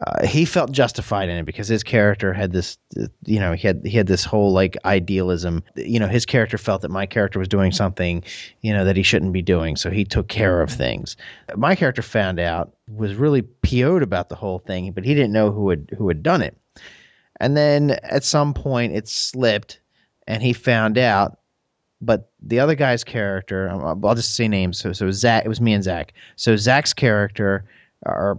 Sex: male